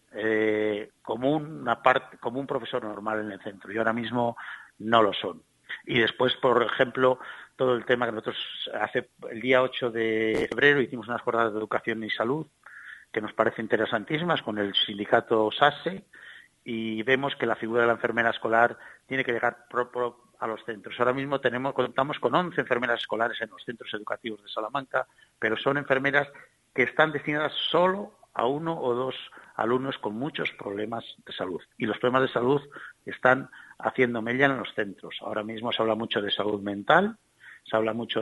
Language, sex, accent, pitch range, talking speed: Spanish, male, Spanish, 110-130 Hz, 175 wpm